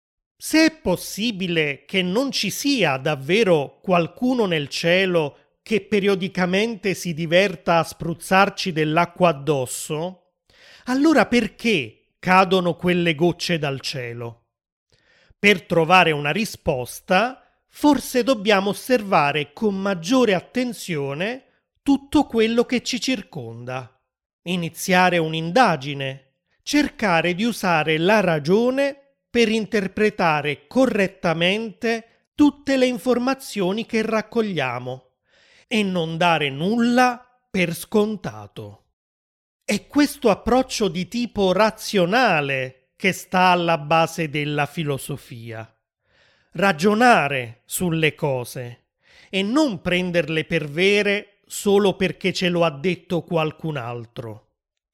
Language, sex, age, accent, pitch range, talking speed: Italian, male, 30-49, native, 155-220 Hz, 100 wpm